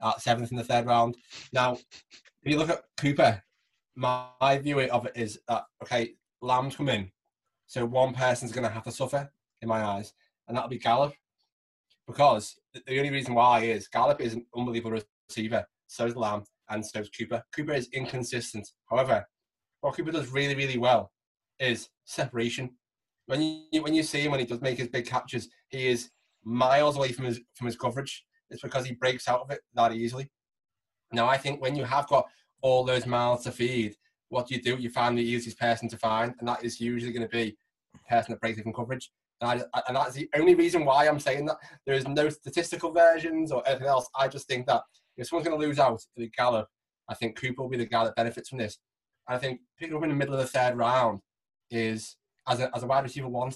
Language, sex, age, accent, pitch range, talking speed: English, male, 20-39, British, 115-135 Hz, 225 wpm